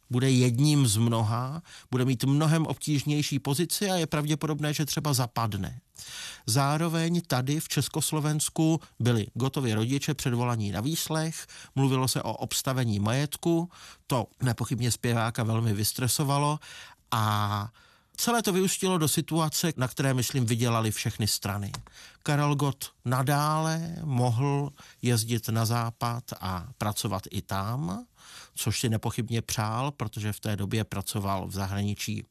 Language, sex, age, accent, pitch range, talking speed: Czech, male, 40-59, native, 110-145 Hz, 130 wpm